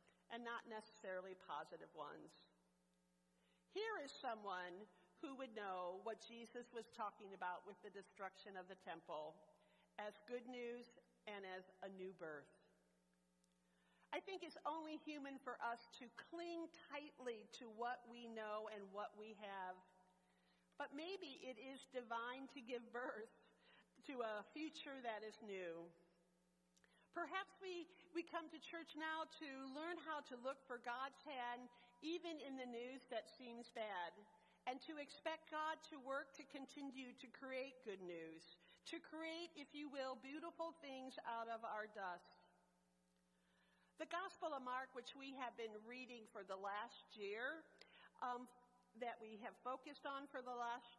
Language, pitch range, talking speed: English, 200-285 Hz, 150 wpm